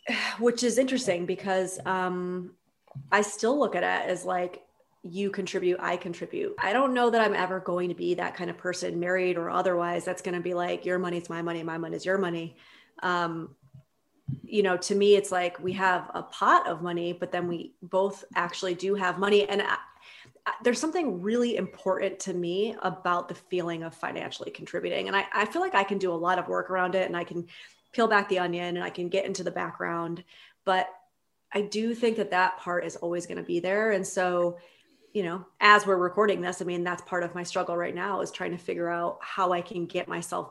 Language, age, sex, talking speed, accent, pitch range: English, 30-49, female, 220 wpm, American, 175-200 Hz